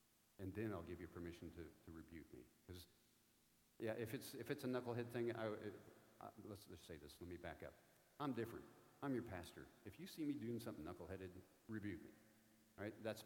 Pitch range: 90-115 Hz